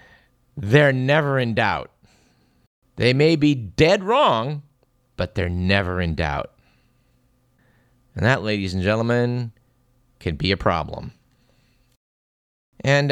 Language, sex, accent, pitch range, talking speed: English, male, American, 105-135 Hz, 110 wpm